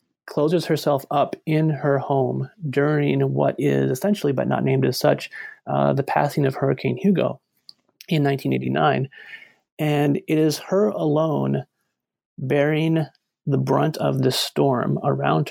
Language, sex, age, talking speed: English, male, 30-49, 135 wpm